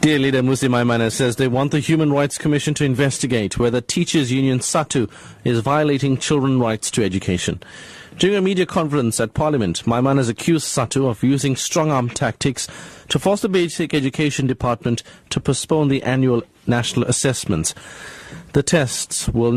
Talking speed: 160 wpm